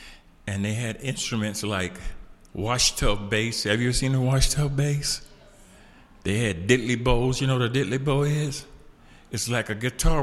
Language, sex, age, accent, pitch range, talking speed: English, male, 50-69, American, 100-135 Hz, 170 wpm